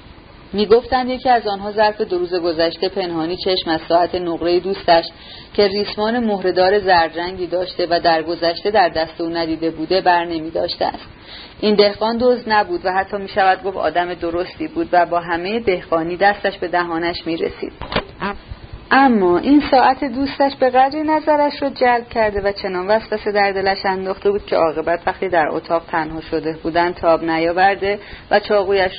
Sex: female